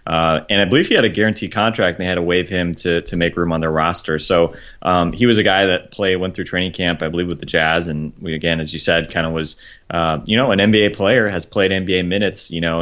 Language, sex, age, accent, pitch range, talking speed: English, male, 20-39, American, 85-95 Hz, 280 wpm